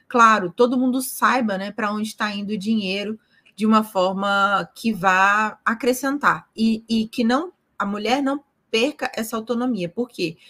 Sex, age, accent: female, 20-39, Brazilian